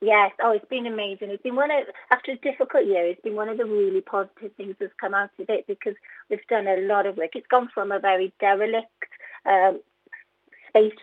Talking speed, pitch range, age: 225 wpm, 195-285 Hz, 30-49